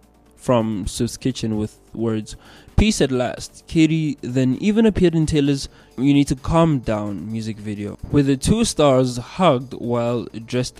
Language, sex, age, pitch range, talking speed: English, male, 20-39, 120-150 Hz, 155 wpm